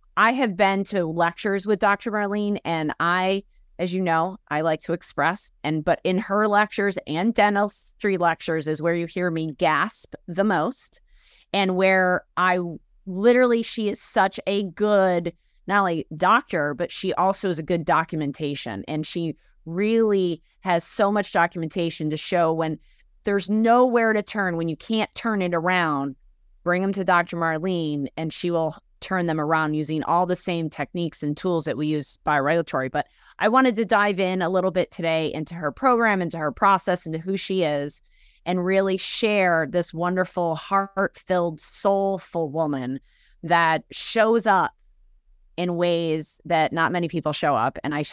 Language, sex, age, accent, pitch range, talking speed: English, female, 30-49, American, 155-195 Hz, 170 wpm